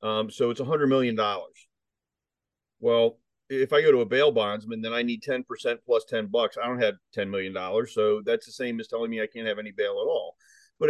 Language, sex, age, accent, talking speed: English, male, 40-59, American, 235 wpm